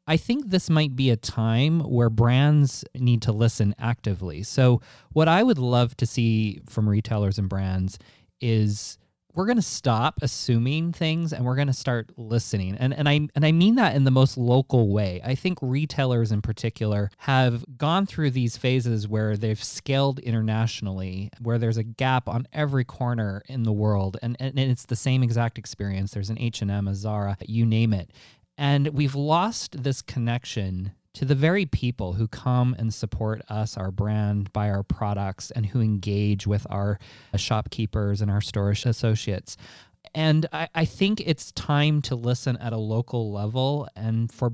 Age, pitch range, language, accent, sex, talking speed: 20-39, 105-135 Hz, English, American, male, 175 wpm